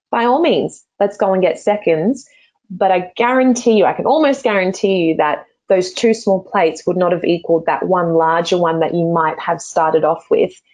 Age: 20-39